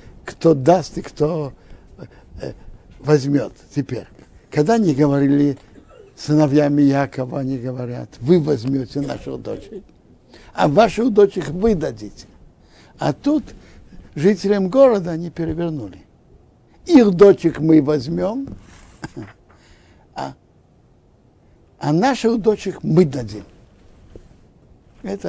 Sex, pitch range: male, 120-180 Hz